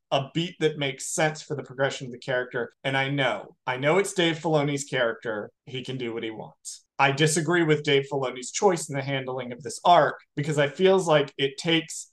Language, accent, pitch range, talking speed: English, American, 125-155 Hz, 220 wpm